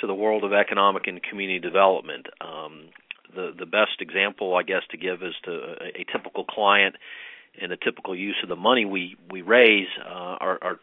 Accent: American